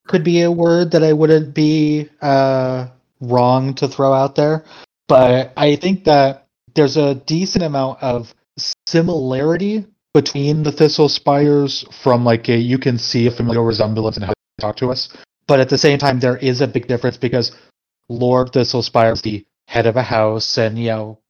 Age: 30-49